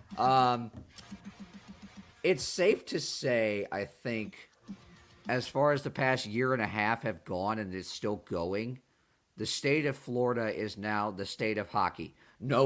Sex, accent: male, American